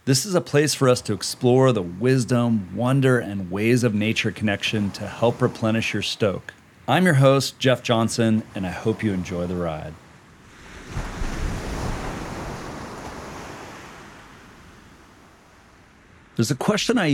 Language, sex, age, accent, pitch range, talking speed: English, male, 40-59, American, 100-125 Hz, 130 wpm